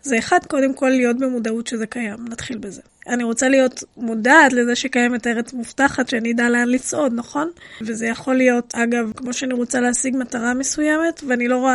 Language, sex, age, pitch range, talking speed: Hebrew, female, 20-39, 245-290 Hz, 185 wpm